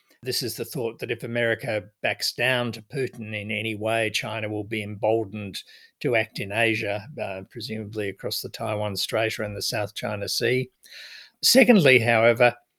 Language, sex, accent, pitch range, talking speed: English, male, Australian, 110-135 Hz, 170 wpm